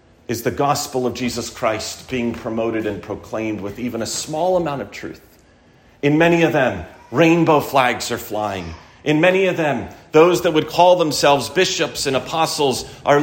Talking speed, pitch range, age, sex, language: 170 wpm, 120-170 Hz, 40-59, male, English